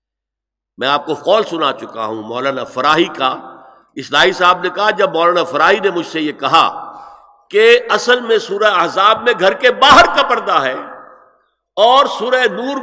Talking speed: 175 wpm